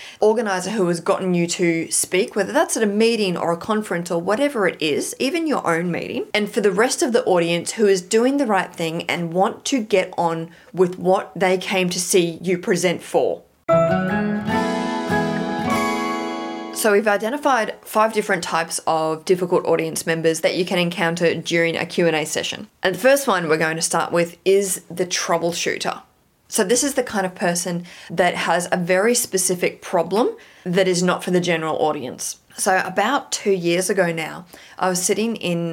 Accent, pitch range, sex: Australian, 170-205 Hz, female